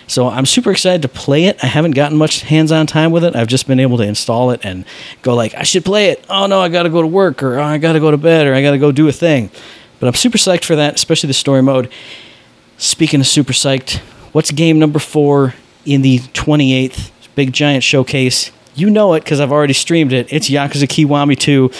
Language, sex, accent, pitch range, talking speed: English, male, American, 130-155 Hz, 245 wpm